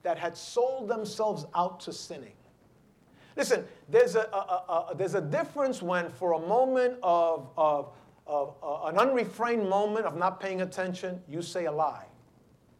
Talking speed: 140 wpm